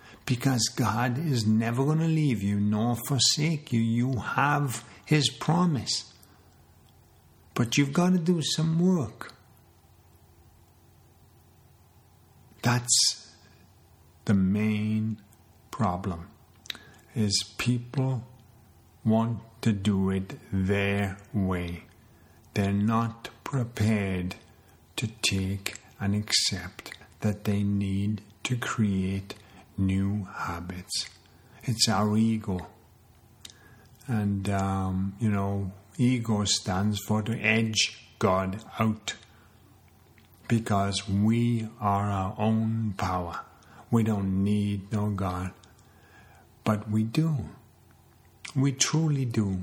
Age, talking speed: 50-69, 95 wpm